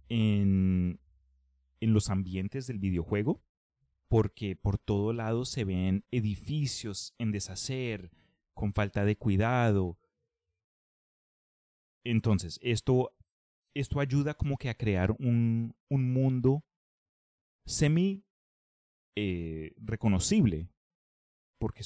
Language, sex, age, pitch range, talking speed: Spanish, male, 30-49, 95-125 Hz, 95 wpm